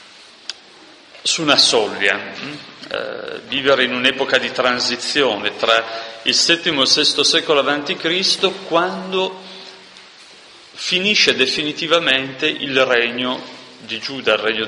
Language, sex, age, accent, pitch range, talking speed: Italian, male, 30-49, native, 115-160 Hz, 105 wpm